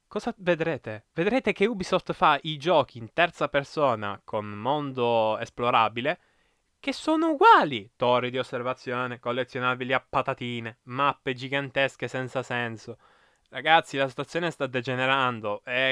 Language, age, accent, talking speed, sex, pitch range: Italian, 20-39, native, 125 wpm, male, 120-140 Hz